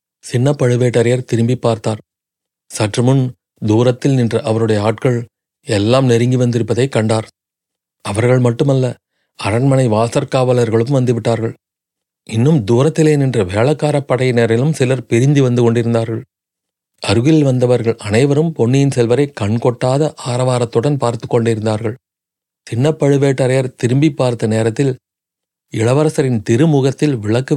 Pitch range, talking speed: 115-135 Hz, 95 wpm